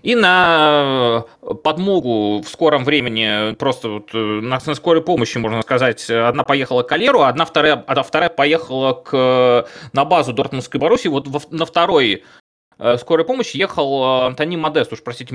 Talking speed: 140 wpm